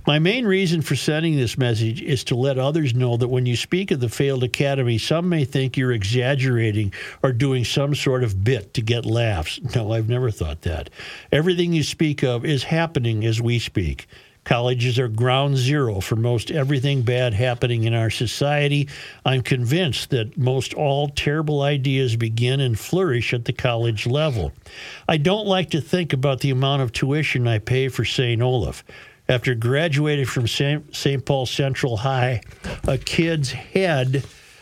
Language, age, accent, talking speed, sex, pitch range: English, 60-79, American, 170 wpm, male, 120-140 Hz